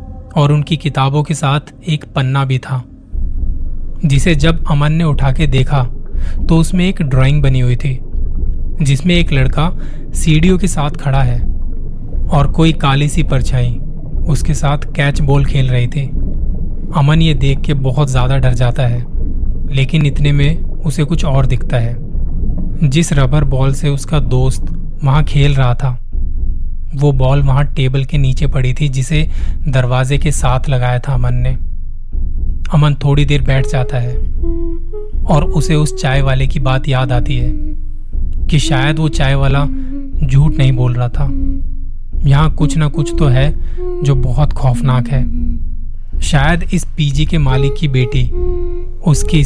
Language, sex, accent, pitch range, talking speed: Hindi, male, native, 125-150 Hz, 160 wpm